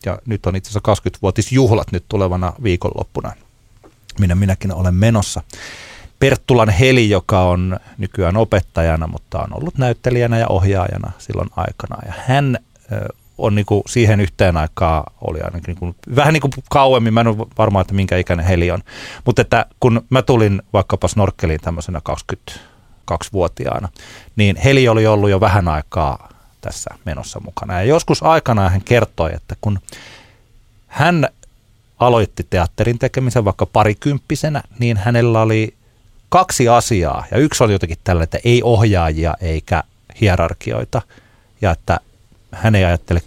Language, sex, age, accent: Finnish, male, 30-49, native